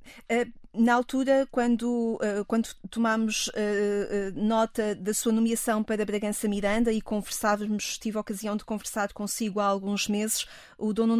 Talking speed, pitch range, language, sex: 135 wpm, 215-240 Hz, Portuguese, female